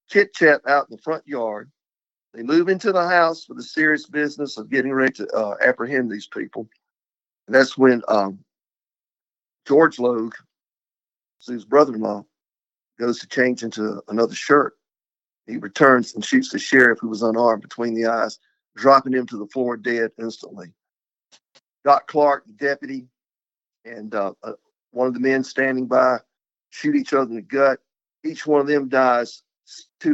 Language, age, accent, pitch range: English, 50-69, American, 125-160 Hz